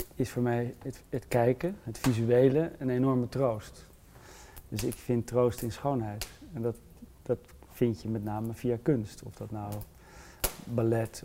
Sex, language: male, Dutch